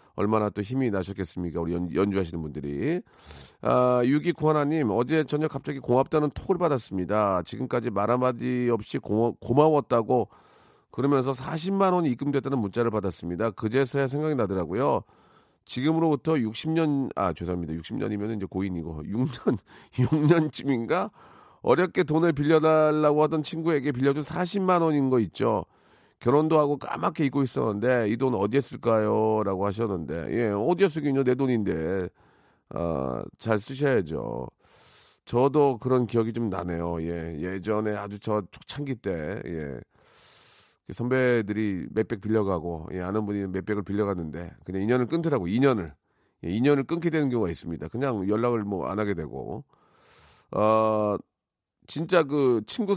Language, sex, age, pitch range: Korean, male, 40-59, 100-145 Hz